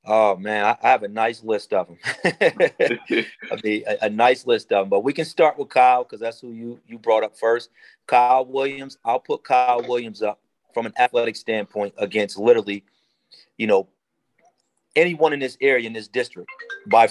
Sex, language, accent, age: male, English, American, 40-59